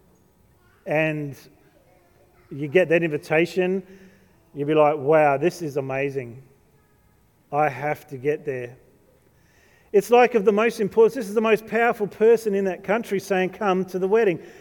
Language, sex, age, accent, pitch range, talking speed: English, male, 40-59, Australian, 155-205 Hz, 150 wpm